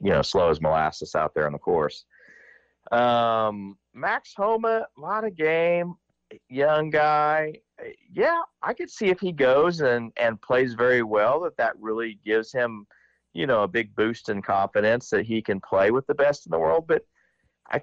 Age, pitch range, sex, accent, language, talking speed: 40-59, 90-130 Hz, male, American, English, 180 wpm